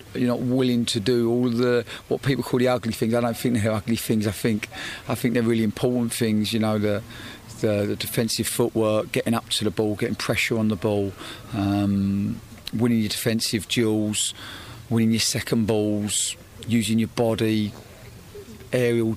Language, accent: English, British